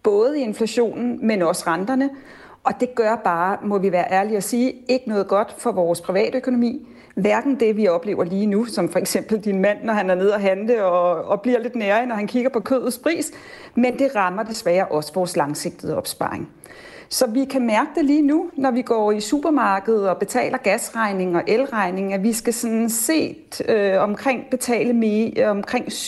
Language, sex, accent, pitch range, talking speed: Danish, female, native, 195-255 Hz, 195 wpm